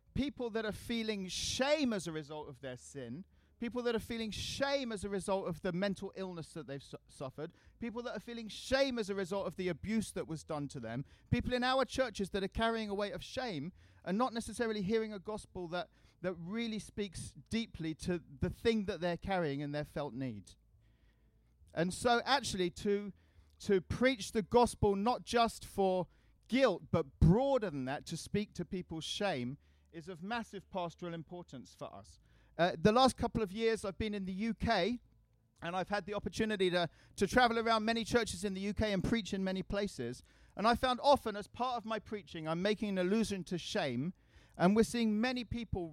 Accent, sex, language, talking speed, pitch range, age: British, male, English, 200 wpm, 155-225 Hz, 40-59